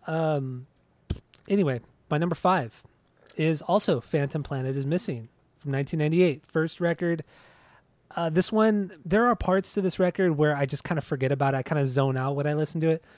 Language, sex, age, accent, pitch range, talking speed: English, male, 20-39, American, 135-170 Hz, 190 wpm